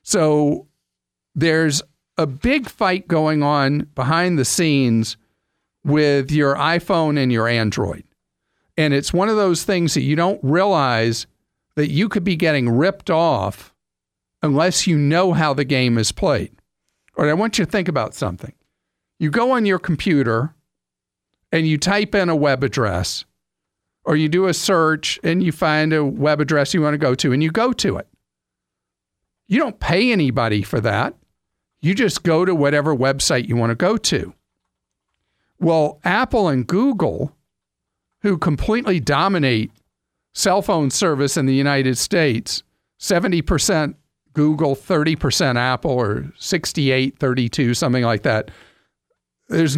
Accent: American